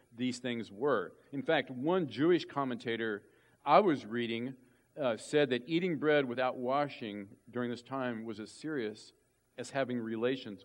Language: English